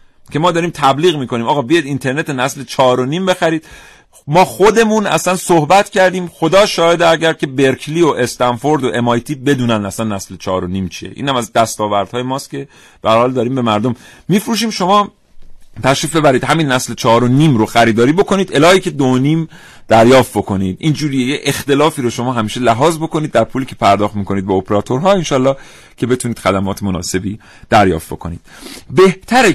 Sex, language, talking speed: male, Persian, 170 wpm